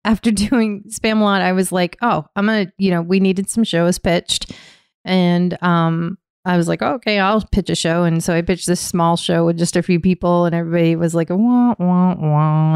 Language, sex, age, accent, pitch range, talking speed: English, female, 30-49, American, 170-210 Hz, 225 wpm